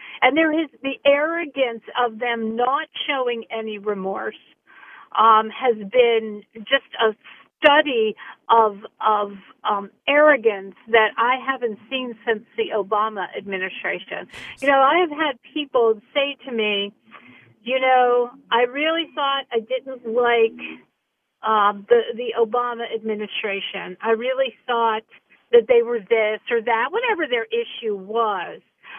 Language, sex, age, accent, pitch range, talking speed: English, female, 50-69, American, 220-280 Hz, 135 wpm